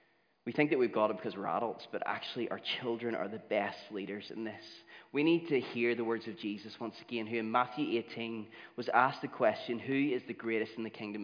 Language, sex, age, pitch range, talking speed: English, male, 30-49, 110-130 Hz, 235 wpm